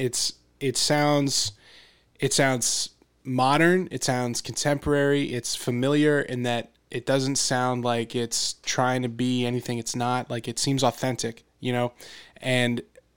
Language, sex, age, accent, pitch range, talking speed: English, male, 20-39, American, 120-145 Hz, 140 wpm